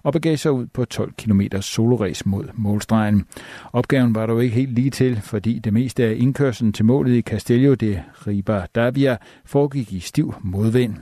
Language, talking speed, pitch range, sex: Danish, 175 wpm, 105-130 Hz, male